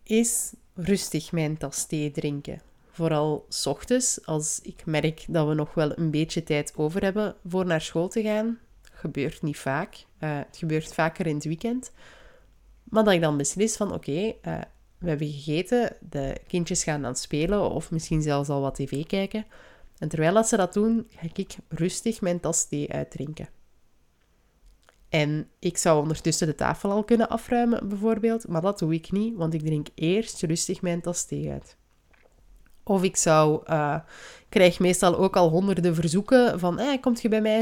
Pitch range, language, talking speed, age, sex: 160-215 Hz, Dutch, 175 wpm, 20-39, female